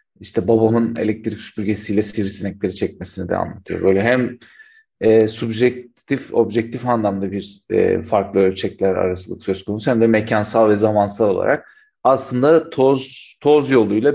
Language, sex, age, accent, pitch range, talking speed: Turkish, male, 40-59, native, 105-120 Hz, 130 wpm